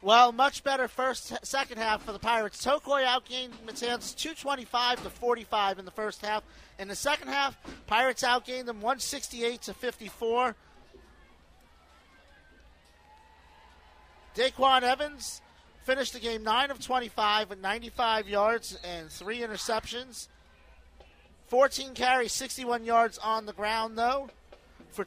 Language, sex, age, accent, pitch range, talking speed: English, male, 40-59, American, 215-255 Hz, 125 wpm